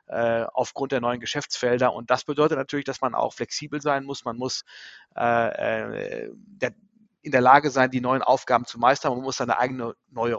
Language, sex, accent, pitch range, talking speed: German, male, German, 120-140 Hz, 175 wpm